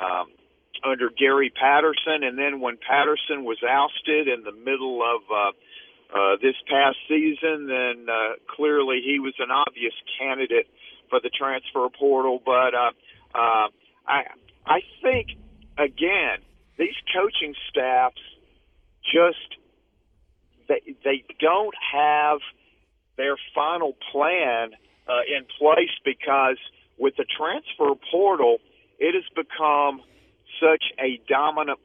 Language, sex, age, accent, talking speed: English, male, 50-69, American, 120 wpm